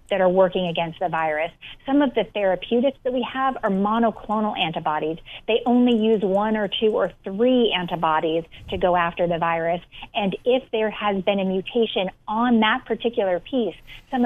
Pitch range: 175-220 Hz